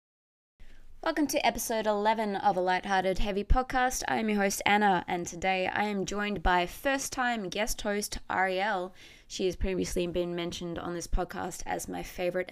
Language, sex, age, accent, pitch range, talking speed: English, female, 20-39, Australian, 170-210 Hz, 170 wpm